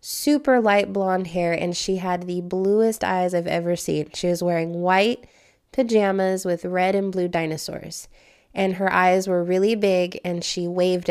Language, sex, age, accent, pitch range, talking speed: English, female, 20-39, American, 175-200 Hz, 175 wpm